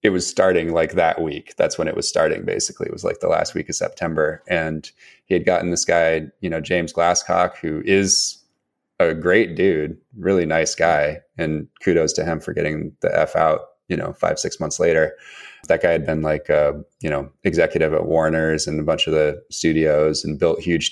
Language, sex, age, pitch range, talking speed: English, male, 20-39, 80-90 Hz, 210 wpm